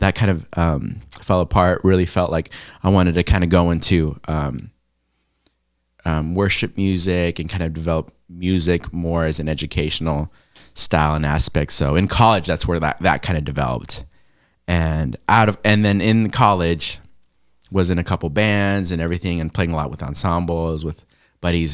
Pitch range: 80-105 Hz